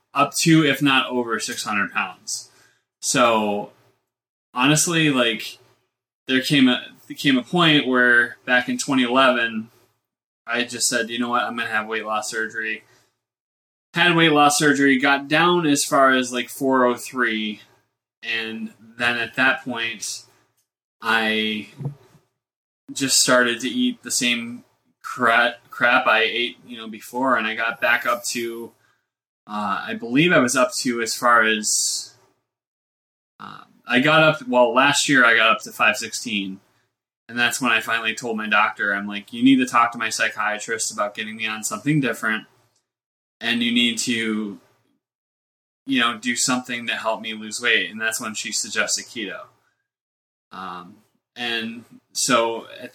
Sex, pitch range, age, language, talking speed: male, 110-135 Hz, 20-39, English, 155 wpm